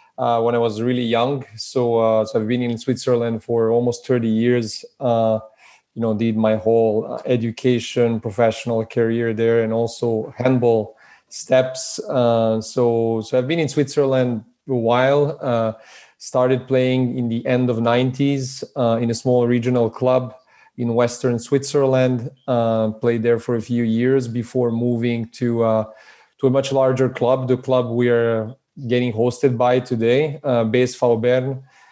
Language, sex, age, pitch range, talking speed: English, male, 30-49, 115-130 Hz, 160 wpm